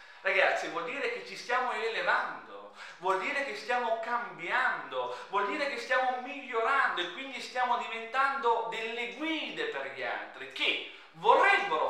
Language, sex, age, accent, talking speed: Italian, male, 40-59, native, 140 wpm